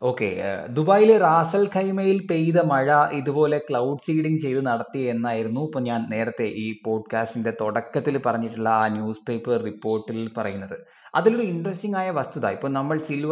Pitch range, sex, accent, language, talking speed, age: 125-165 Hz, male, native, Malayalam, 140 wpm, 20-39